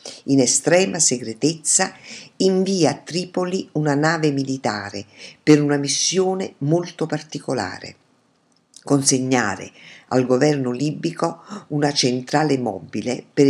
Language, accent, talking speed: Italian, native, 100 wpm